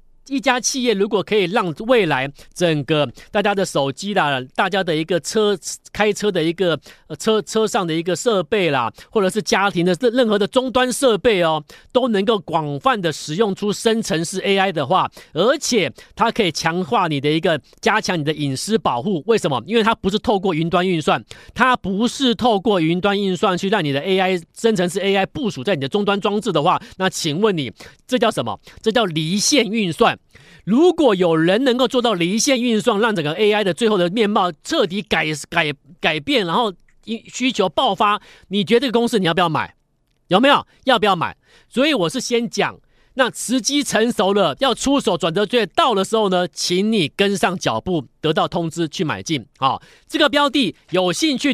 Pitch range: 165-225 Hz